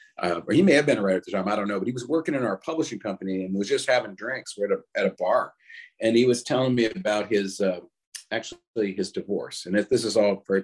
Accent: American